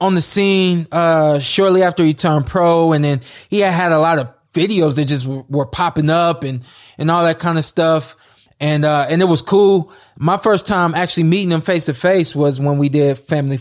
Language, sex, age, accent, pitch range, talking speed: English, male, 20-39, American, 145-180 Hz, 225 wpm